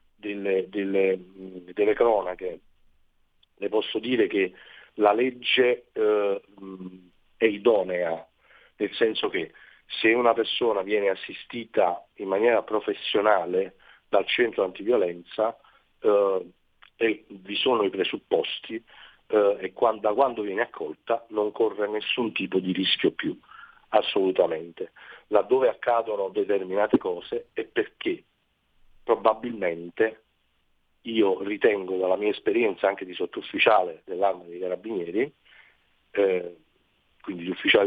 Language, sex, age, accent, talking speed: Italian, male, 40-59, native, 110 wpm